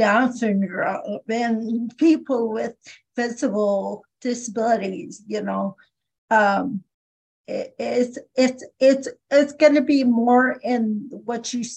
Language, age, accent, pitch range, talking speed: English, 50-69, American, 215-255 Hz, 110 wpm